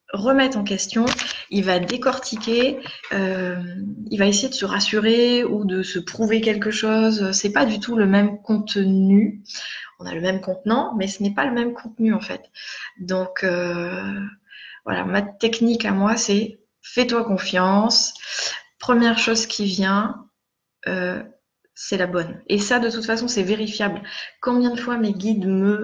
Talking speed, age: 165 wpm, 20-39